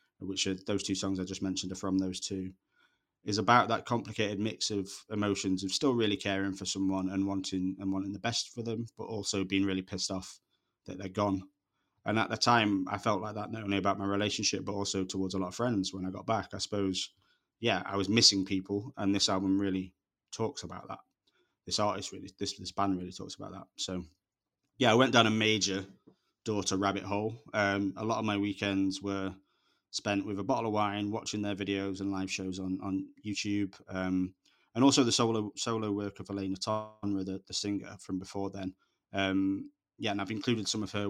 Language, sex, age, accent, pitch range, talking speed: English, male, 20-39, British, 95-105 Hz, 215 wpm